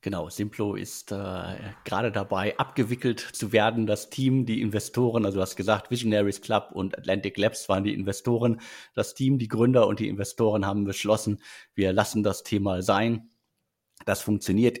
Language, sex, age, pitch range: German, male, 50-69, 100-120 Hz